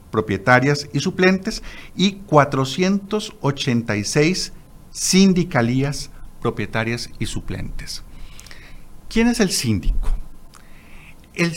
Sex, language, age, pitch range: male, Spanish, 50-69, 105-150 Hz